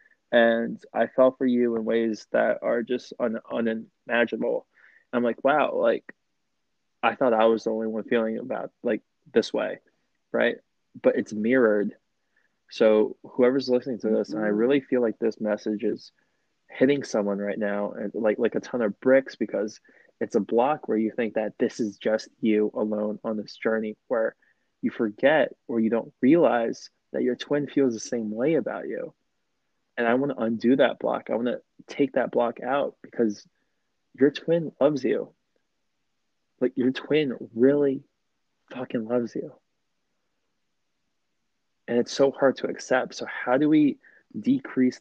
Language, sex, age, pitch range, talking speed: English, male, 20-39, 110-130 Hz, 165 wpm